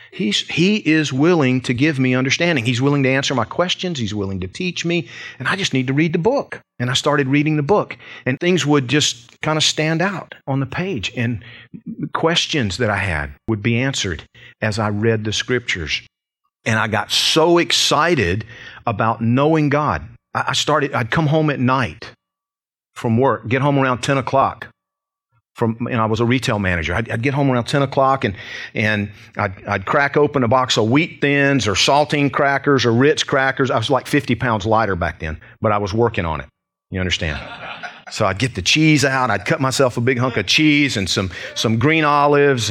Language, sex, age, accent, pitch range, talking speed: English, male, 40-59, American, 115-150 Hz, 205 wpm